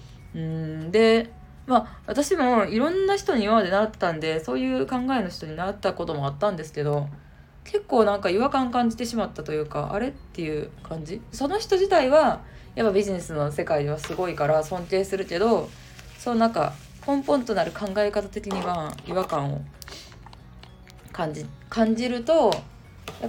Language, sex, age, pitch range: Japanese, female, 20-39, 150-225 Hz